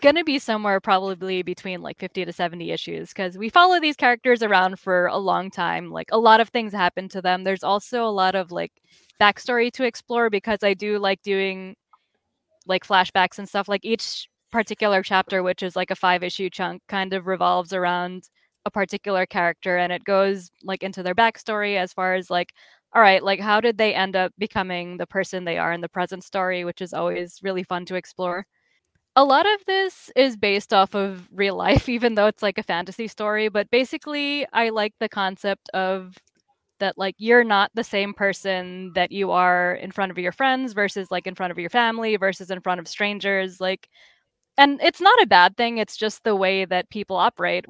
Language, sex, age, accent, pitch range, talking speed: English, female, 10-29, American, 185-215 Hz, 205 wpm